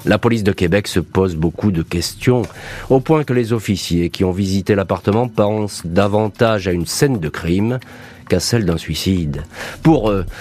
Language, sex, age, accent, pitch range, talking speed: French, male, 40-59, French, 95-120 Hz, 180 wpm